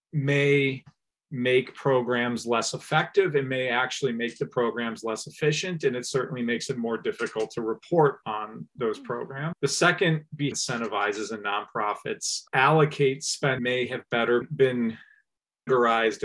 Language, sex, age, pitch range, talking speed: English, male, 40-59, 120-155 Hz, 140 wpm